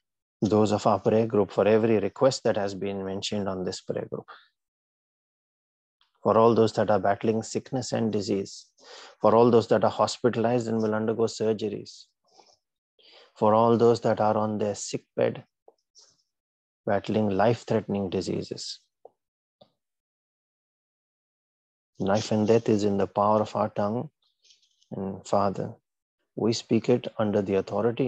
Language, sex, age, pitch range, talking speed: English, male, 30-49, 100-115 Hz, 140 wpm